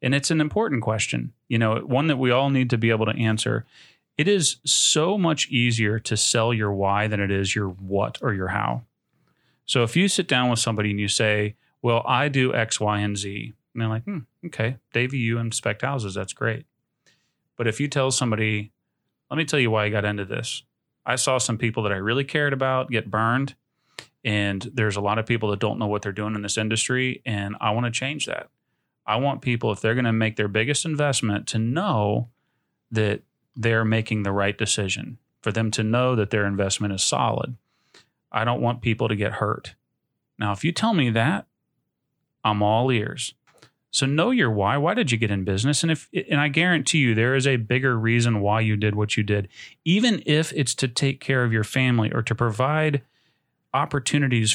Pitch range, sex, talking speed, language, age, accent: 110-135 Hz, male, 210 wpm, English, 30-49, American